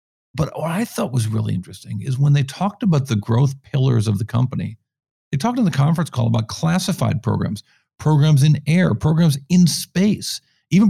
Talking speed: 185 wpm